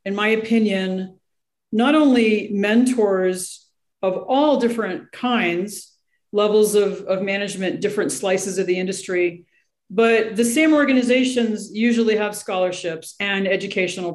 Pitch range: 185-230 Hz